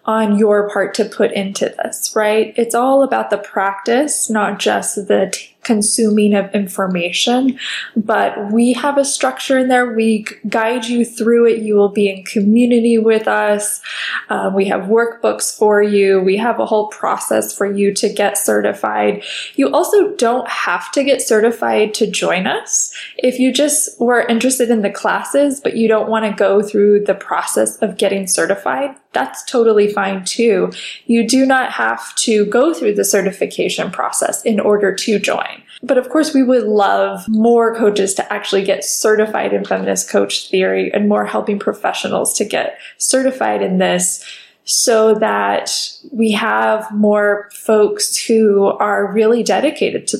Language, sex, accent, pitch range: English, female, American, 200-235 Hz